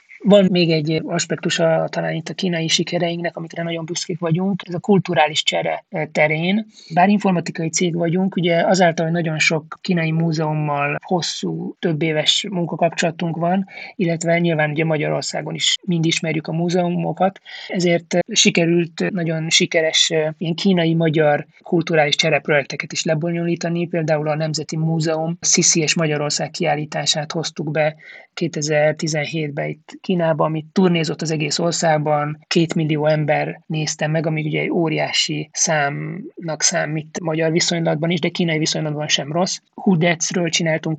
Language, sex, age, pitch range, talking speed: Hungarian, male, 30-49, 155-175 Hz, 135 wpm